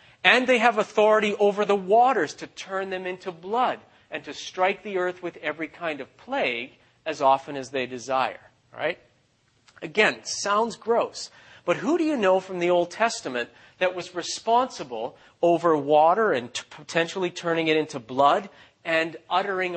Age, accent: 40-59, American